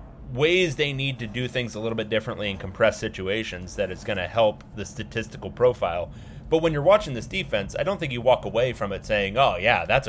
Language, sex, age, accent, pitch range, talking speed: English, male, 30-49, American, 90-120 Hz, 230 wpm